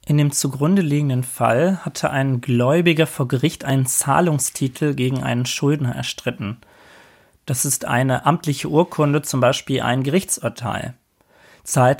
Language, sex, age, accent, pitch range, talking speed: German, male, 30-49, German, 130-165 Hz, 130 wpm